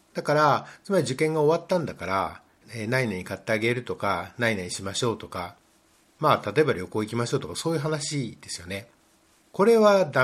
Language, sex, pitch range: Japanese, male, 110-155 Hz